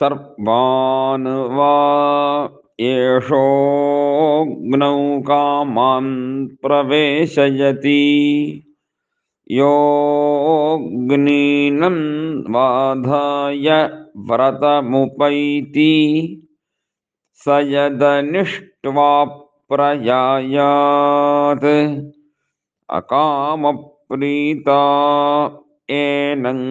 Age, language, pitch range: 50-69, Malayalam, 140-145 Hz